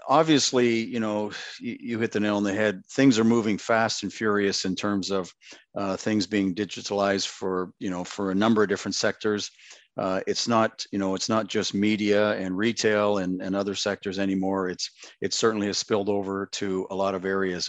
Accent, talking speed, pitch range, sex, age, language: American, 200 wpm, 95-110 Hz, male, 50-69, English